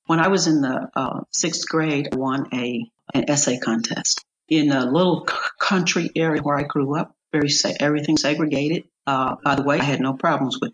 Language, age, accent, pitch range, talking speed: English, 50-69, American, 150-215 Hz, 205 wpm